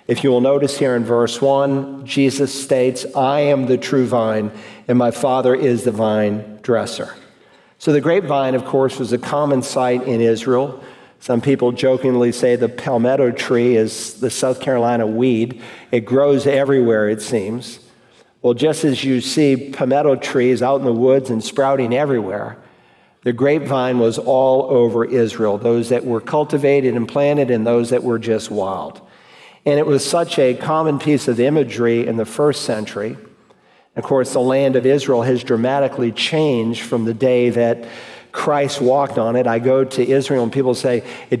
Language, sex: English, male